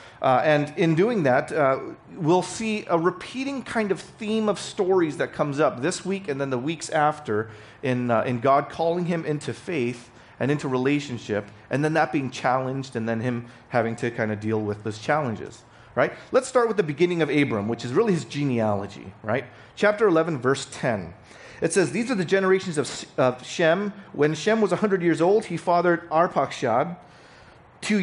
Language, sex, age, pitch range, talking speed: English, male, 40-59, 130-180 Hz, 190 wpm